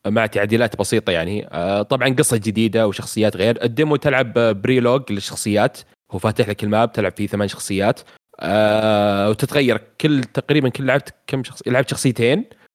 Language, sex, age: Arabic, male, 30-49